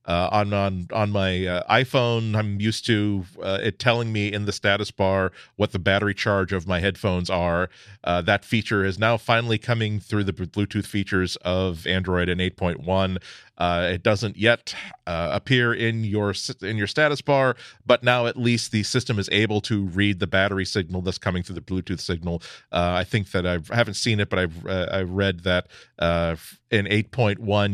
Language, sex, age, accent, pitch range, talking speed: English, male, 40-59, American, 95-110 Hz, 200 wpm